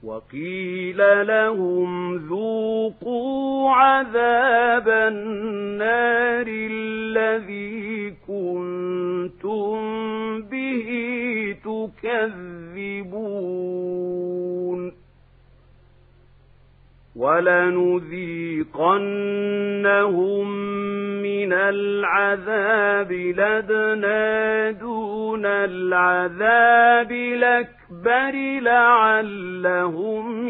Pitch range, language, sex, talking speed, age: 180-245 Hz, Arabic, male, 35 wpm, 50-69